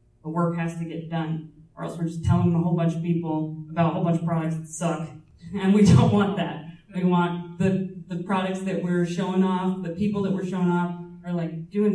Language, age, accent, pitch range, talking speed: English, 30-49, American, 165-185 Hz, 235 wpm